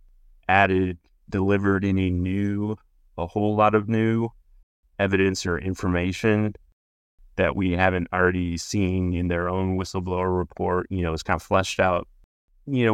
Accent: American